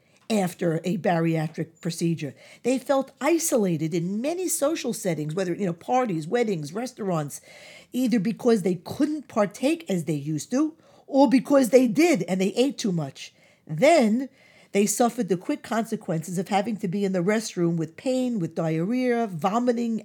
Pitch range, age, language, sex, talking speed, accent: 180-260 Hz, 50-69, English, female, 160 wpm, American